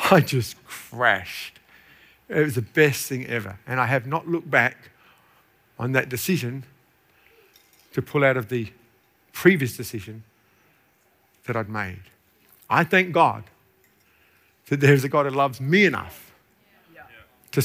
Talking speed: 135 wpm